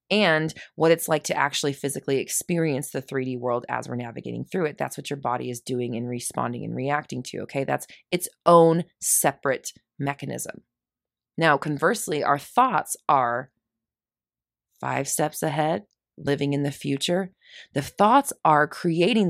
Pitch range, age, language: 130-165 Hz, 20-39, English